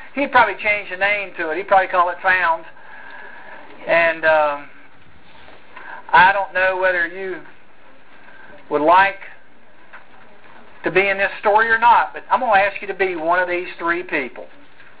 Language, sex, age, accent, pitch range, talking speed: English, male, 50-69, American, 175-240 Hz, 165 wpm